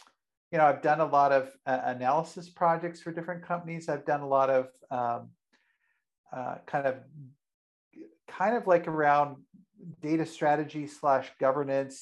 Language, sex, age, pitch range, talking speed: English, male, 50-69, 130-155 Hz, 150 wpm